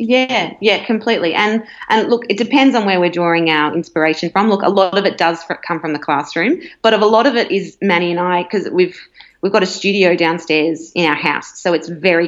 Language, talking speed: English, 240 wpm